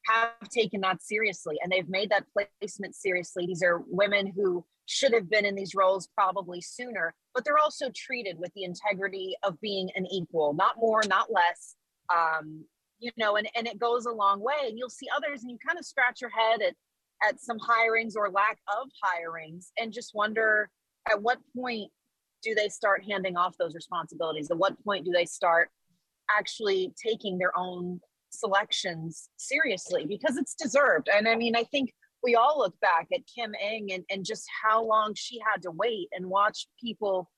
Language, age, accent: English, 30-49, American